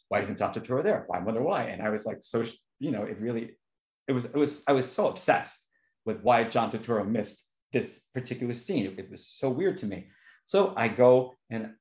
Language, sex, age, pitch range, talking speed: English, male, 30-49, 105-130 Hz, 225 wpm